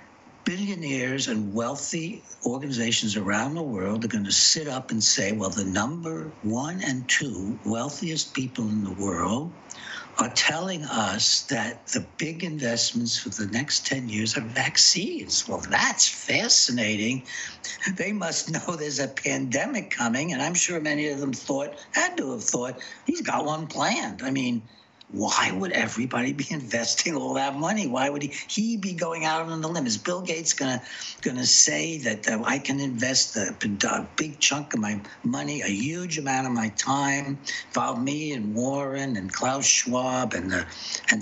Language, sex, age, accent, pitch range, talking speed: English, male, 60-79, American, 115-160 Hz, 170 wpm